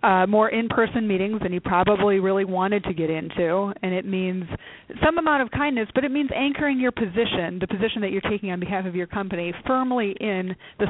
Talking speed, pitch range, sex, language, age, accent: 210 wpm, 185-225 Hz, female, English, 30-49, American